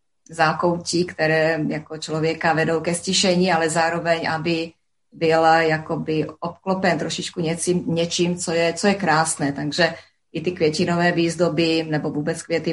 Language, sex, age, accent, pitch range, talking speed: Czech, female, 30-49, native, 160-175 Hz, 125 wpm